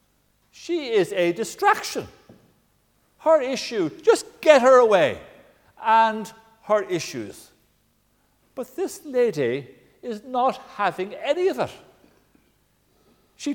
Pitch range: 185-255 Hz